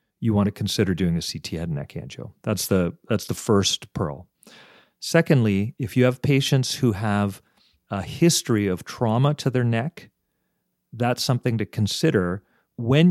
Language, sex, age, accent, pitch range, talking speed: English, male, 40-59, American, 100-130 Hz, 165 wpm